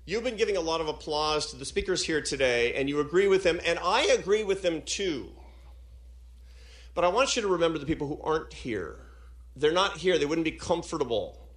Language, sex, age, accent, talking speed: English, male, 40-59, American, 215 wpm